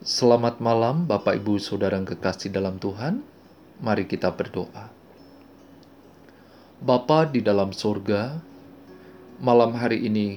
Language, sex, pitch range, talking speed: Indonesian, male, 100-140 Hz, 105 wpm